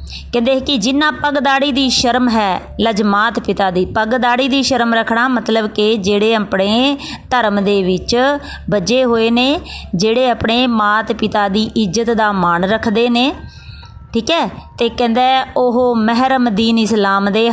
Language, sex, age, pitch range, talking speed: Punjabi, female, 20-39, 215-260 Hz, 145 wpm